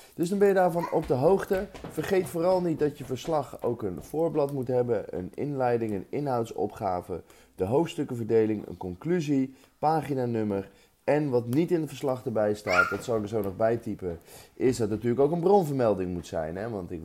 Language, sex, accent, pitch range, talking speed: Dutch, male, Dutch, 90-140 Hz, 195 wpm